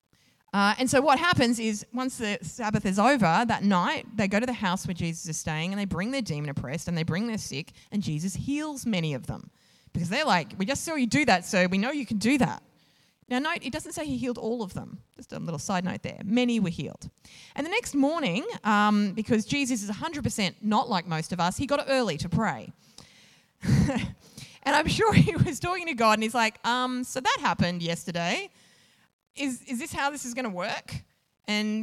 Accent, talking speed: Australian, 225 wpm